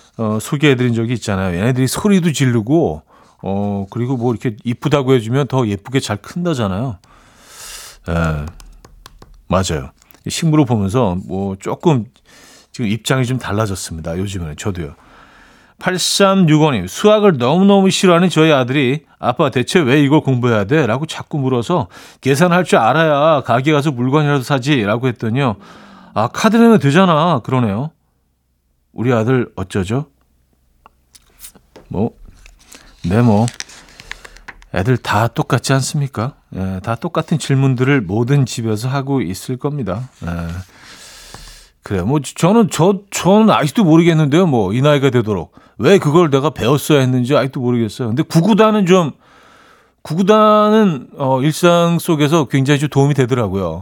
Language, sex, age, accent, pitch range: Korean, male, 40-59, native, 110-155 Hz